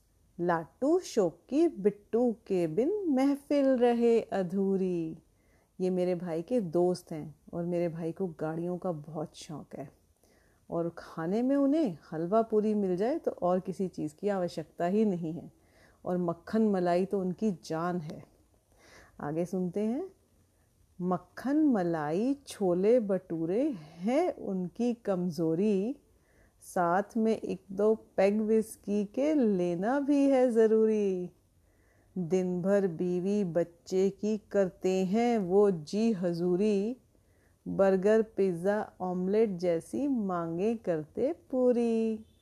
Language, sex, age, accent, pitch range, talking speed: Hindi, female, 40-59, native, 175-225 Hz, 120 wpm